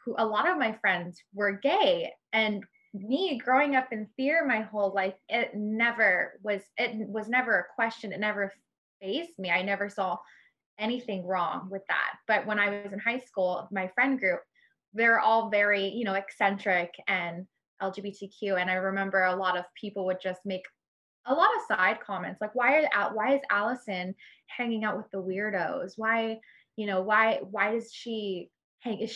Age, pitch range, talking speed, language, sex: 20-39, 190-230 Hz, 180 wpm, English, female